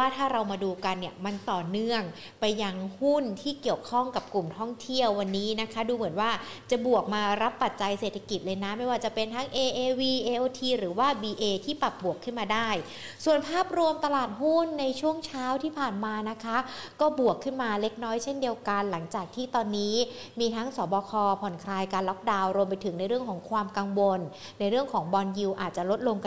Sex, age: female, 60-79